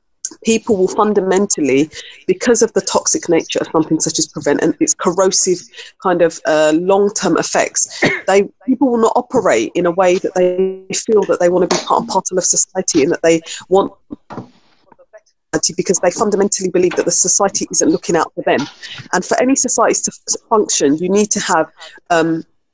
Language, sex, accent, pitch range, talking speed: English, female, British, 180-225 Hz, 185 wpm